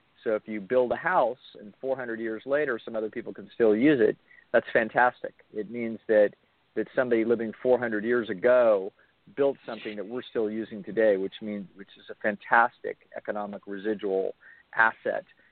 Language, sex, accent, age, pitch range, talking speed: English, male, American, 40-59, 105-125 Hz, 170 wpm